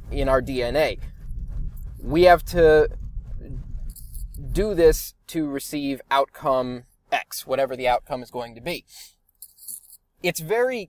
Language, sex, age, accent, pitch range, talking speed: English, male, 20-39, American, 135-170 Hz, 115 wpm